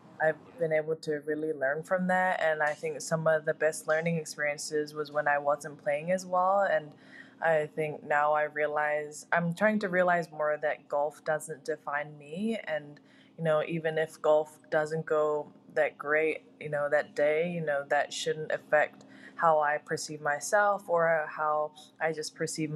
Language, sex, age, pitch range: English, female, 20-39, 150-165 Hz